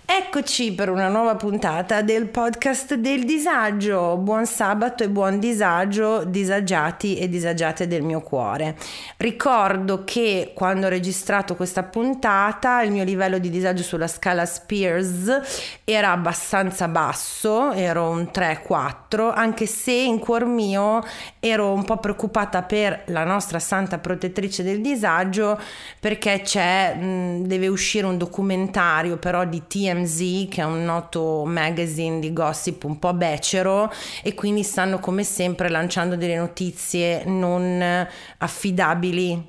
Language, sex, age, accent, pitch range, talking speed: Italian, female, 30-49, native, 170-205 Hz, 130 wpm